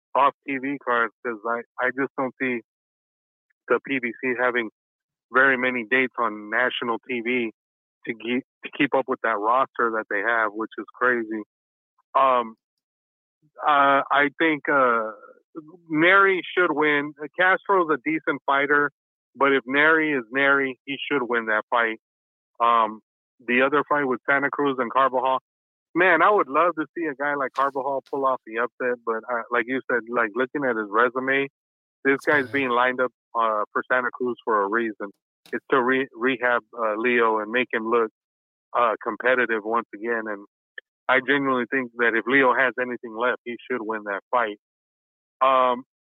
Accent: American